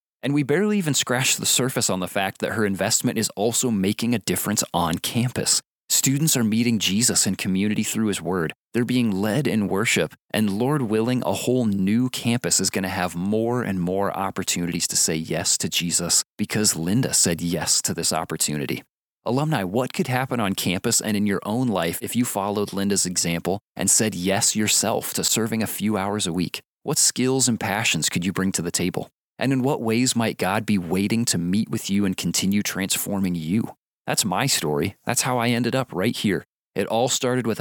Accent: American